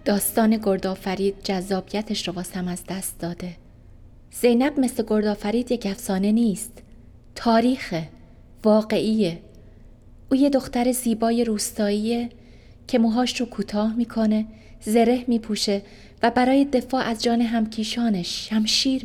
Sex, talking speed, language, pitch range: female, 110 wpm, Persian, 190-240 Hz